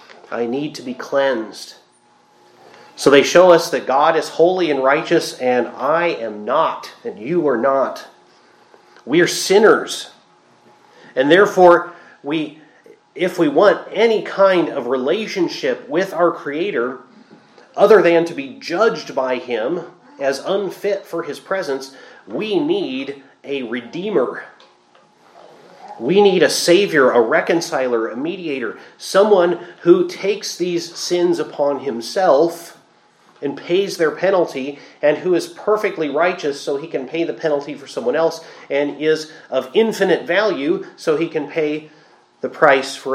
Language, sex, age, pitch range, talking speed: English, male, 30-49, 135-195 Hz, 140 wpm